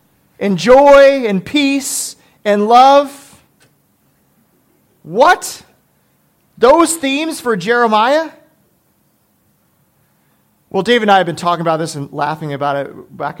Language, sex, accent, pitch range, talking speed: English, male, American, 170-245 Hz, 110 wpm